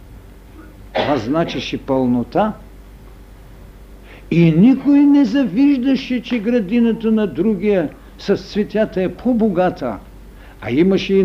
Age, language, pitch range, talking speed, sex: 70-89, Bulgarian, 130-215 Hz, 95 wpm, male